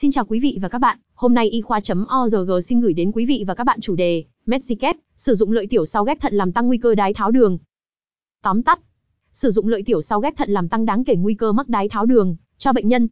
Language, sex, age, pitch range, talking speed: Vietnamese, female, 20-39, 205-250 Hz, 260 wpm